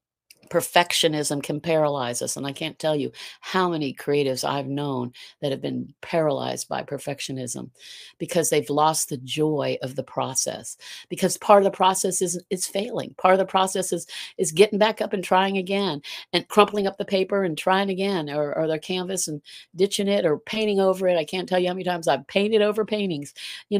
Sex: female